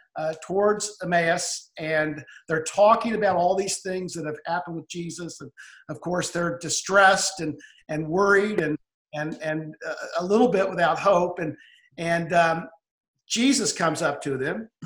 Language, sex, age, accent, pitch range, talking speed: English, male, 50-69, American, 165-210 Hz, 160 wpm